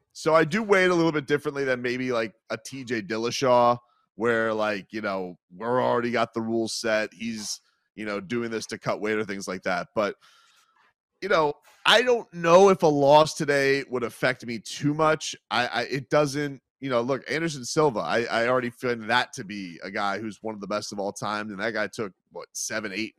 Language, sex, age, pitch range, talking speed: English, male, 30-49, 105-130 Hz, 225 wpm